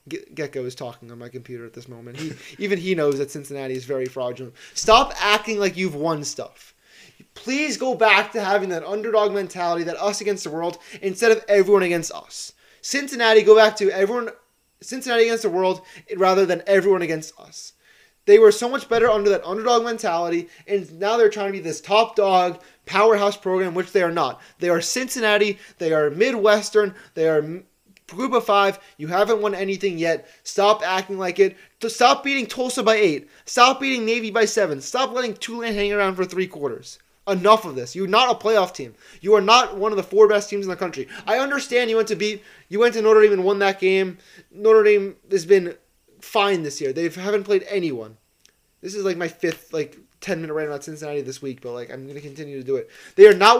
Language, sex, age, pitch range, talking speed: English, male, 20-39, 170-220 Hz, 210 wpm